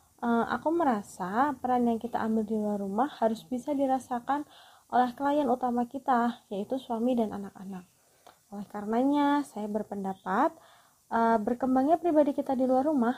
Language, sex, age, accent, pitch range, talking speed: Indonesian, female, 20-39, native, 210-250 Hz, 135 wpm